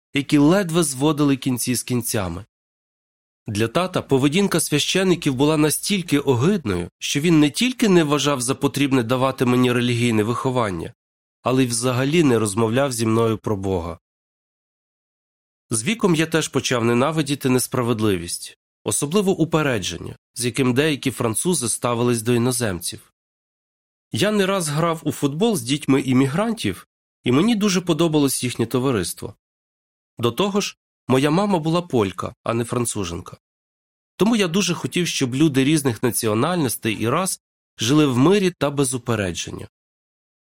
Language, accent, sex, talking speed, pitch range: Ukrainian, native, male, 135 wpm, 115-160 Hz